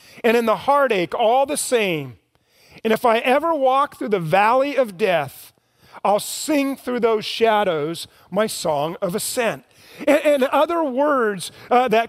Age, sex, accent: 40-59, male, American